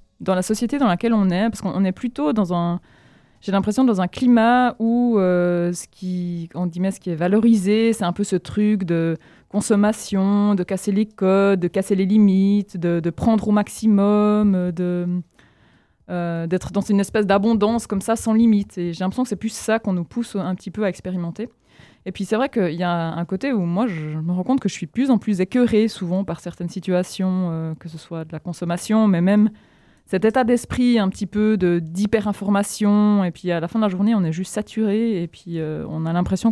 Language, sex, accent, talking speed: French, female, French, 225 wpm